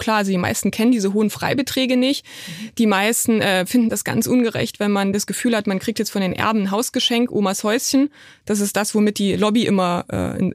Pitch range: 195-230 Hz